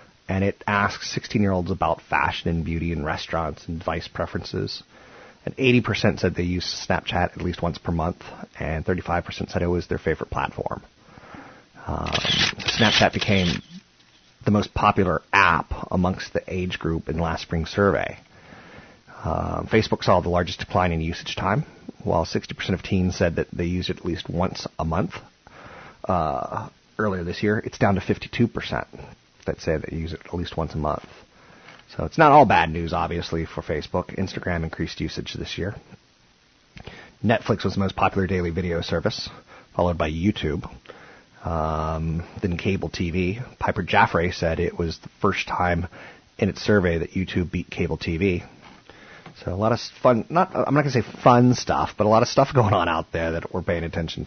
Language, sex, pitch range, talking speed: English, male, 85-100 Hz, 180 wpm